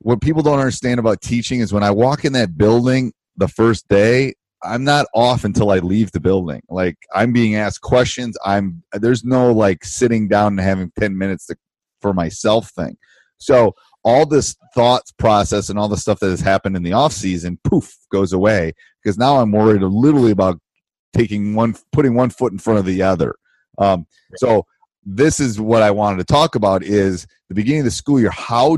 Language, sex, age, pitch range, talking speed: English, male, 30-49, 90-115 Hz, 200 wpm